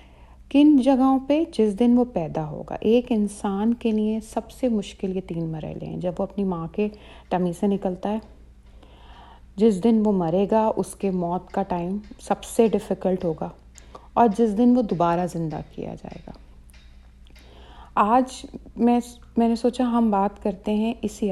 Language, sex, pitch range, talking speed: Urdu, female, 180-245 Hz, 170 wpm